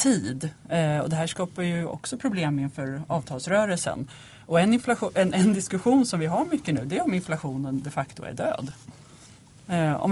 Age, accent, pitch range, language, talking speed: 30-49, native, 145-180 Hz, Swedish, 185 wpm